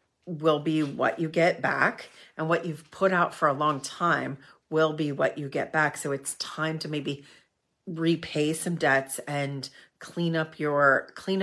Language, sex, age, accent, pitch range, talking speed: English, female, 40-59, American, 140-160 Hz, 180 wpm